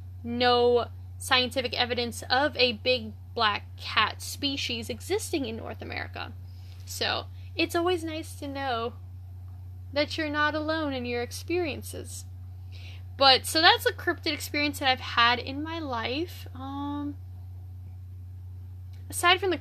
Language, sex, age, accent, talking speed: English, female, 10-29, American, 130 wpm